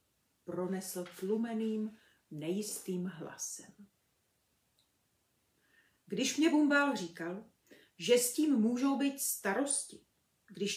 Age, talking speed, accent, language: 40-59, 85 wpm, native, Czech